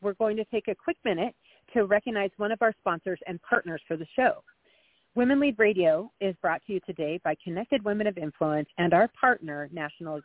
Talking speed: 205 wpm